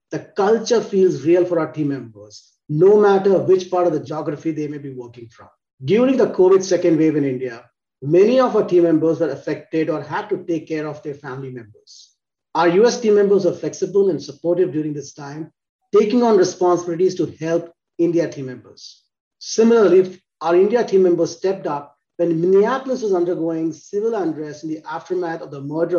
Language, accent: English, Indian